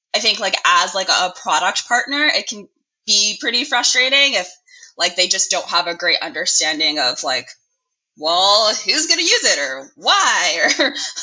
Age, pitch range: 20-39, 185-305 Hz